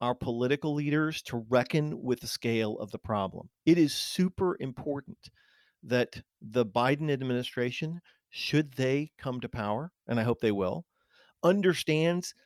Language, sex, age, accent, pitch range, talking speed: English, male, 40-59, American, 130-180 Hz, 145 wpm